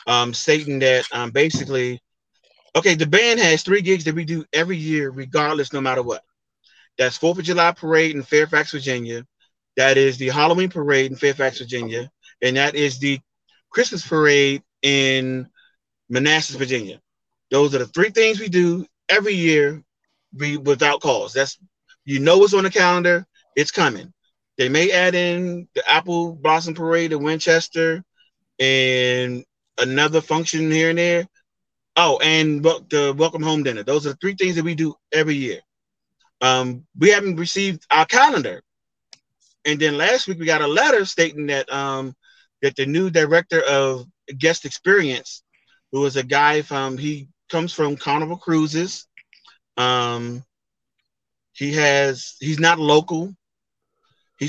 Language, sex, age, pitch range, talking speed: English, male, 30-49, 135-170 Hz, 150 wpm